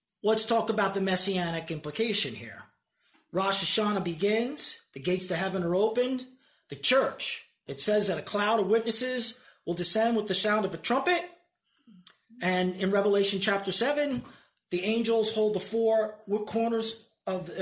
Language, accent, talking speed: English, American, 155 wpm